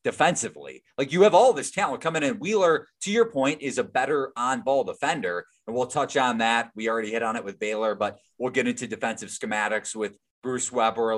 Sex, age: male, 20-39